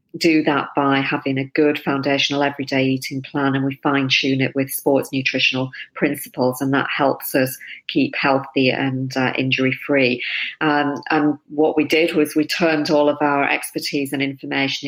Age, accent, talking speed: 40-59, British, 175 wpm